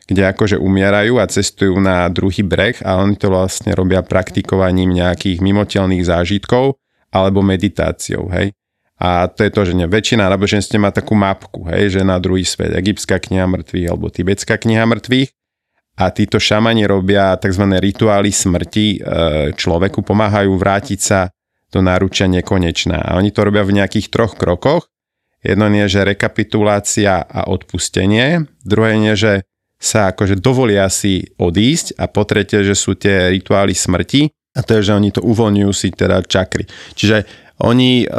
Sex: male